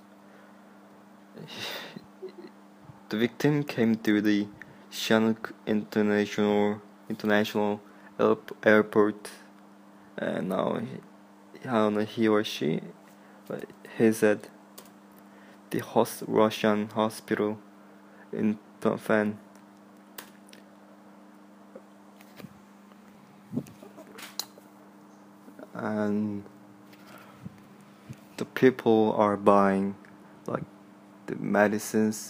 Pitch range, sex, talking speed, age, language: 100-105 Hz, male, 65 wpm, 20-39, English